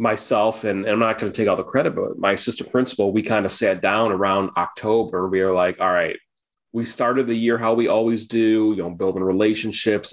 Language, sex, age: English, male, 20-39